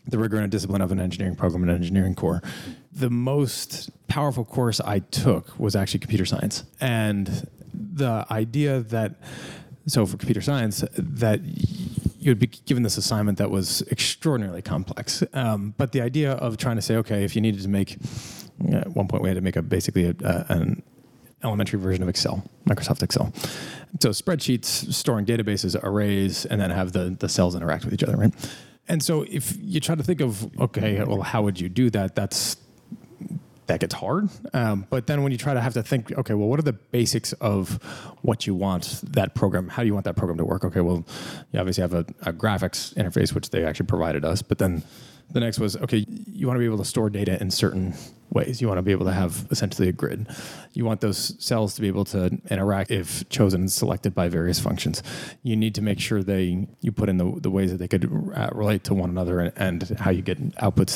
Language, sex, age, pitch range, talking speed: English, male, 30-49, 95-125 Hz, 215 wpm